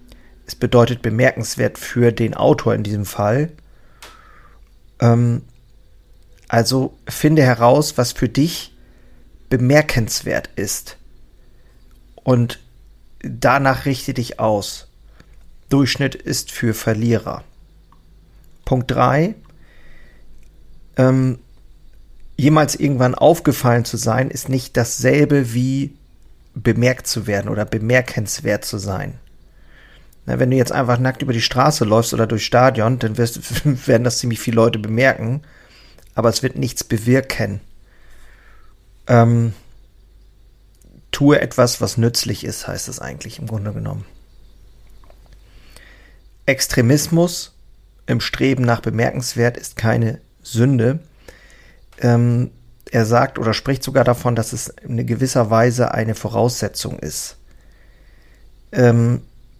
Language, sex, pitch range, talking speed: German, male, 115-130 Hz, 110 wpm